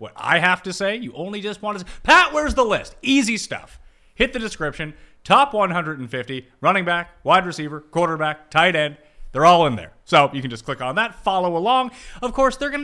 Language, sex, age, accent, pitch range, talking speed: English, male, 30-49, American, 140-225 Hz, 215 wpm